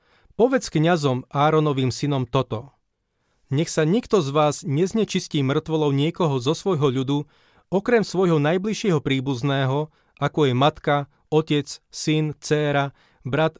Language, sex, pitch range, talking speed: Slovak, male, 140-175 Hz, 120 wpm